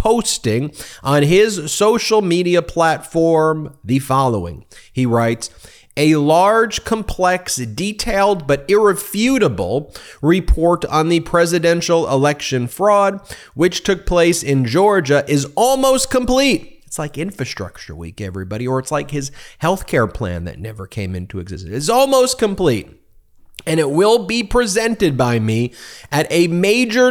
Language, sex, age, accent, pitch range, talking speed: English, male, 30-49, American, 130-200 Hz, 135 wpm